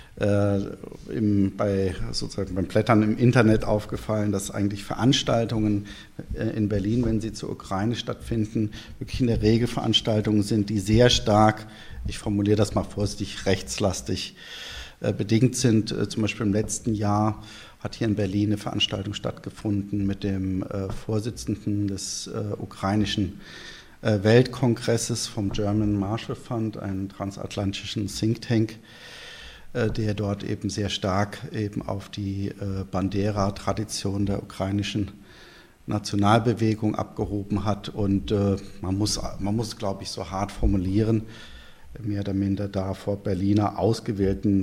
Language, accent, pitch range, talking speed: German, German, 100-110 Hz, 130 wpm